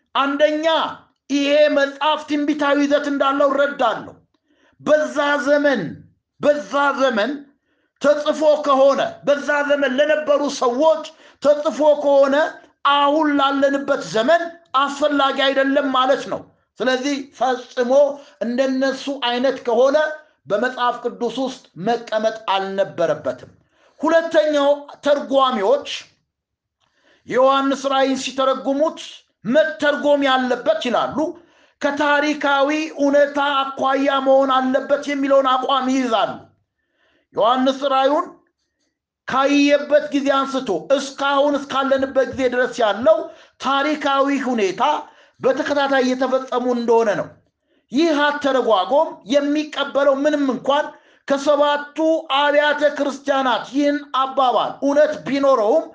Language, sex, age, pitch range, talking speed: Amharic, male, 60-79, 265-295 Hz, 85 wpm